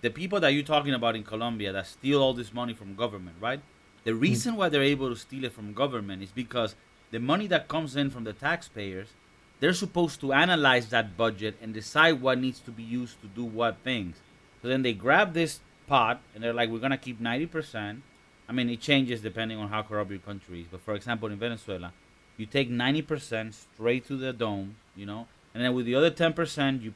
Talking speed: 220 wpm